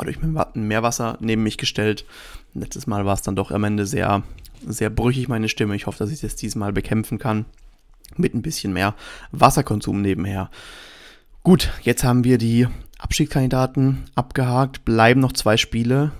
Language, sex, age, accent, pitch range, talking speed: German, male, 30-49, German, 110-130 Hz, 165 wpm